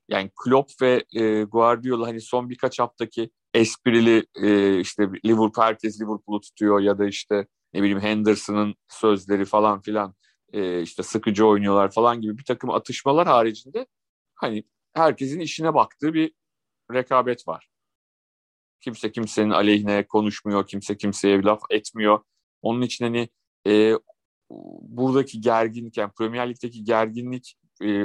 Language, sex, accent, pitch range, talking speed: Turkish, male, native, 105-120 Hz, 130 wpm